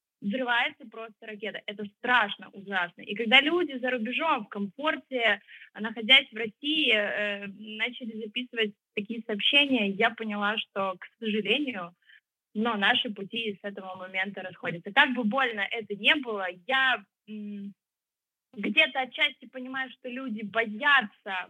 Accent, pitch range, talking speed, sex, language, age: native, 200-255 Hz, 130 wpm, female, Ukrainian, 20-39